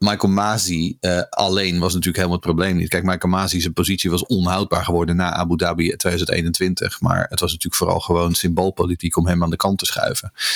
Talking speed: 200 wpm